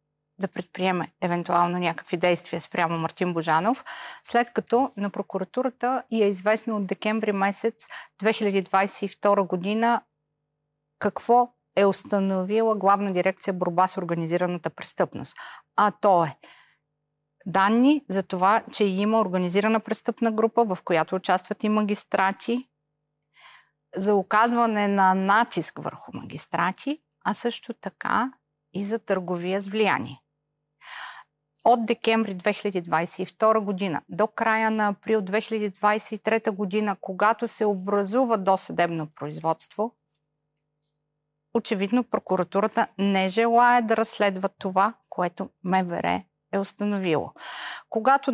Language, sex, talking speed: Bulgarian, female, 105 wpm